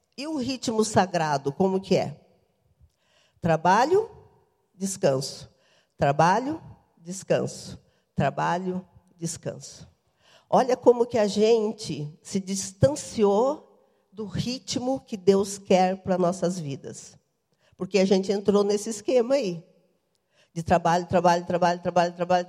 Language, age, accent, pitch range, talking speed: Portuguese, 50-69, Brazilian, 170-220 Hz, 110 wpm